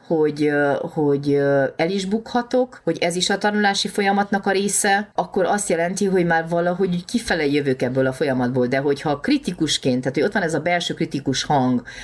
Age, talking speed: 30-49, 180 wpm